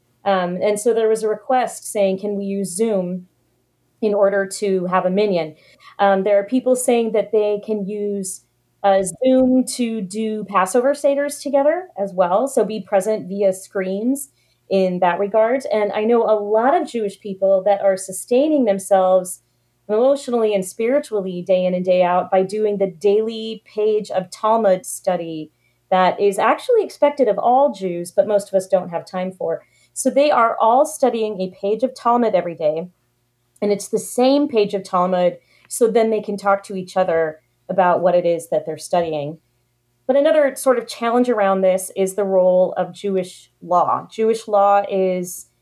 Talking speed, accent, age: 180 wpm, American, 30-49